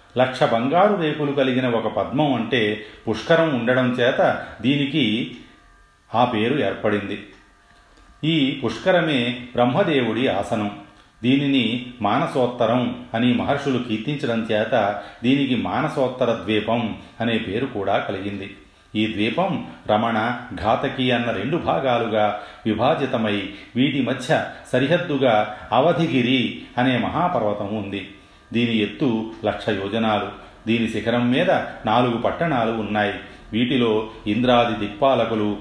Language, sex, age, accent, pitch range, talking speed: Telugu, male, 40-59, native, 105-130 Hz, 100 wpm